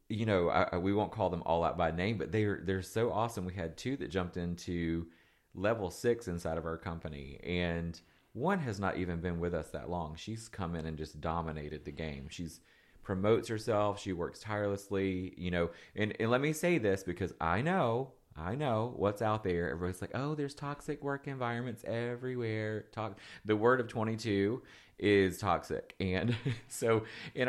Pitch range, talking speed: 85-110 Hz, 185 wpm